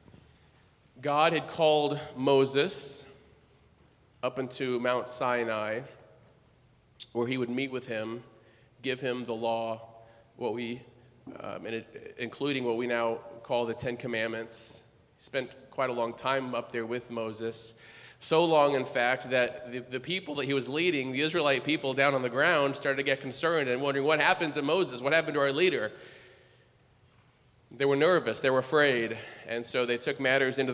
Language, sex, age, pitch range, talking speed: English, male, 30-49, 120-140 Hz, 165 wpm